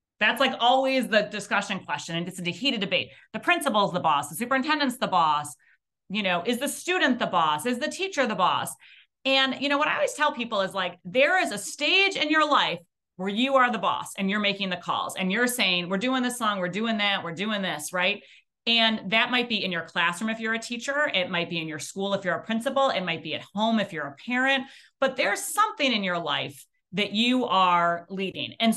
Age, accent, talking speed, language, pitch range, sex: 30-49, American, 235 wpm, English, 180-250 Hz, female